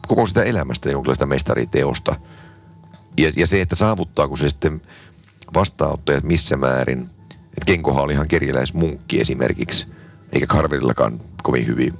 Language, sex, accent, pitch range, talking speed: Finnish, male, native, 70-85 Hz, 120 wpm